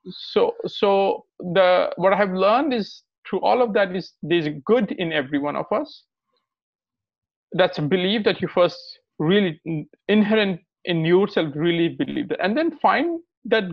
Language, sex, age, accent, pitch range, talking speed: English, male, 50-69, Indian, 170-230 Hz, 165 wpm